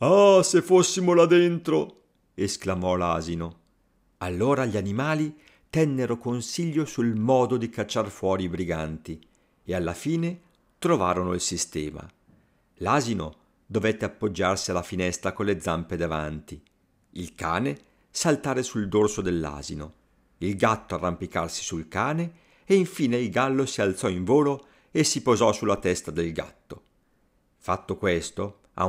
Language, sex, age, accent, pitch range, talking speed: Italian, male, 50-69, native, 90-135 Hz, 130 wpm